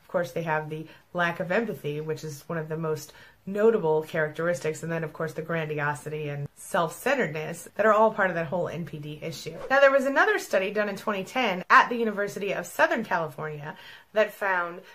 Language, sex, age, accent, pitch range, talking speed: English, female, 30-49, American, 160-205 Hz, 195 wpm